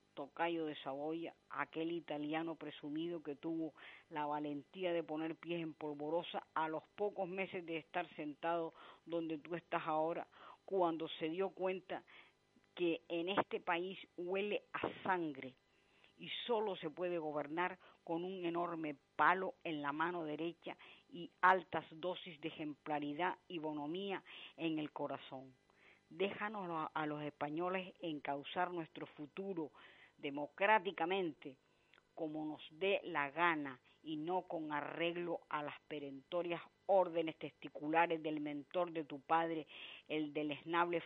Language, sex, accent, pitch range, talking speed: Spanish, female, American, 150-180 Hz, 130 wpm